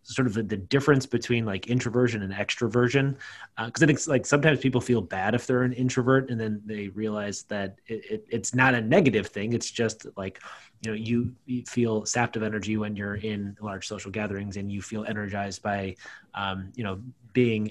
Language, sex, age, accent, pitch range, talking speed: English, male, 30-49, American, 105-130 Hz, 210 wpm